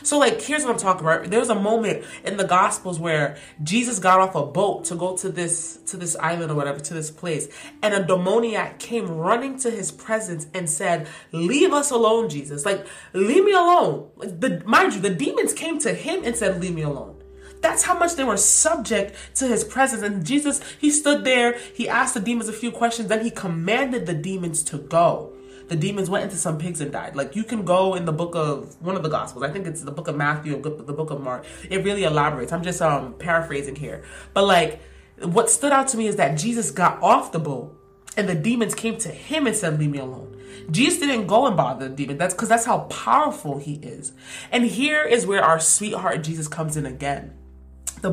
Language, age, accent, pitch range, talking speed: English, 20-39, American, 155-230 Hz, 225 wpm